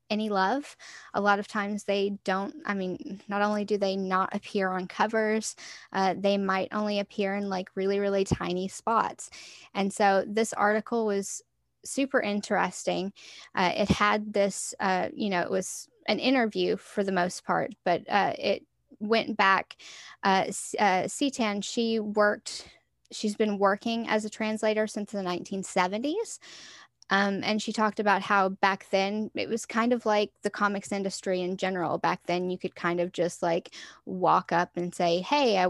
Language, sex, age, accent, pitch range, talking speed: English, female, 10-29, American, 185-215 Hz, 170 wpm